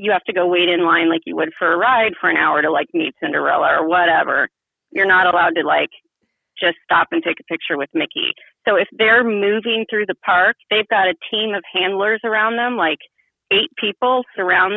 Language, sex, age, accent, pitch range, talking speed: English, female, 30-49, American, 185-235 Hz, 220 wpm